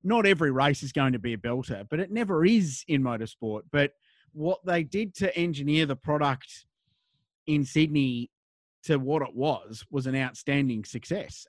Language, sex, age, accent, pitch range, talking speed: English, male, 30-49, Australian, 130-160 Hz, 170 wpm